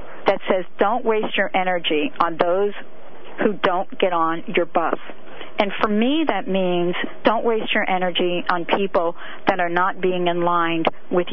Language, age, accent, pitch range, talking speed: English, 50-69, American, 175-220 Hz, 170 wpm